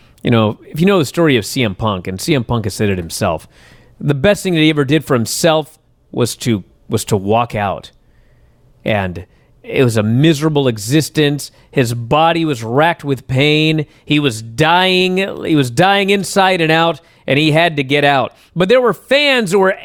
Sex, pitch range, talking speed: male, 125-195 Hz, 195 wpm